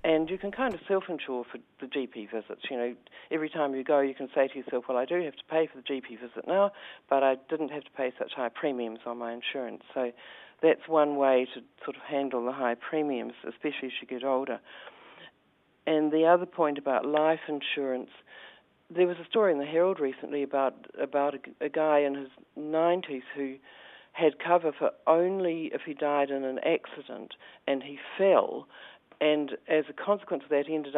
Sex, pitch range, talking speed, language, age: female, 135-160 Hz, 205 wpm, English, 50-69